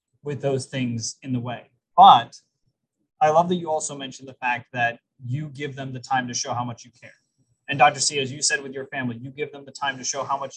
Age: 20-39